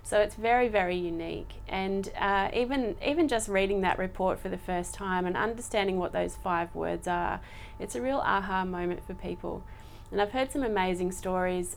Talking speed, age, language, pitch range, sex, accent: 190 wpm, 30-49, English, 175-205 Hz, female, Australian